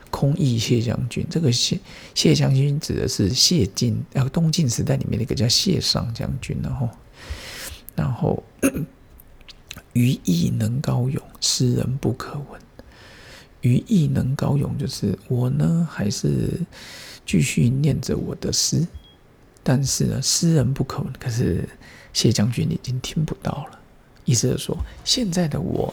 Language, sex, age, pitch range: Chinese, male, 50-69, 125-160 Hz